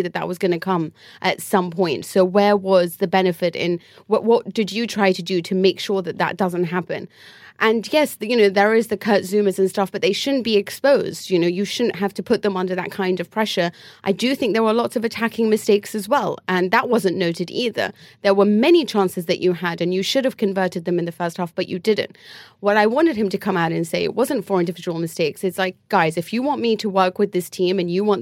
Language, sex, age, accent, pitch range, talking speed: English, female, 30-49, British, 180-215 Hz, 260 wpm